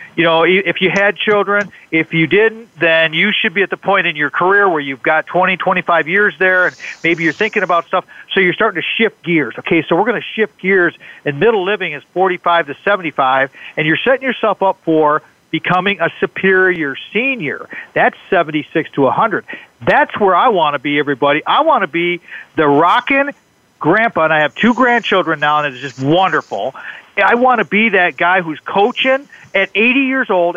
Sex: male